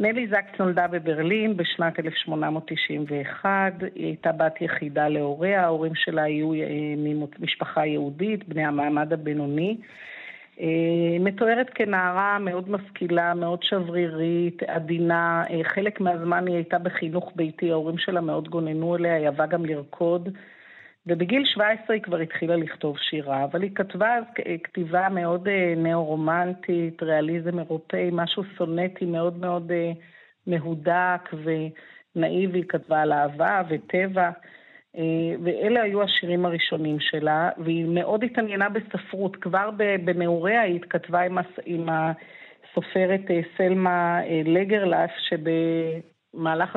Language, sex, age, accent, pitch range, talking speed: Hebrew, female, 50-69, native, 160-185 Hz, 110 wpm